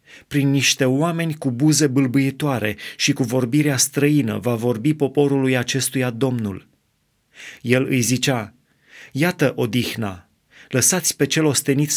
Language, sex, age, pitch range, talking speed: Romanian, male, 30-49, 125-145 Hz, 120 wpm